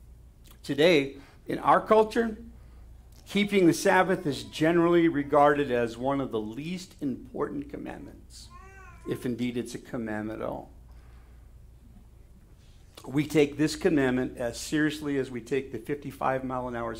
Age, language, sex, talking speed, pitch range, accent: 50-69, English, male, 125 wpm, 115-155 Hz, American